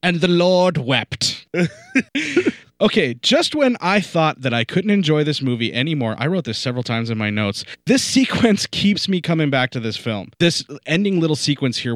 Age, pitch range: 30-49, 115-150 Hz